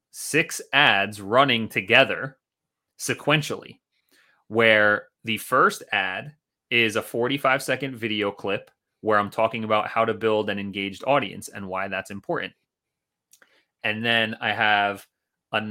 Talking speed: 125 wpm